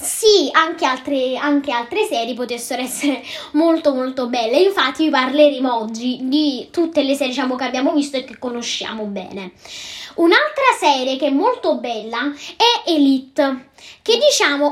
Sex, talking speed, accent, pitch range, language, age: female, 150 wpm, native, 255-315 Hz, Italian, 10-29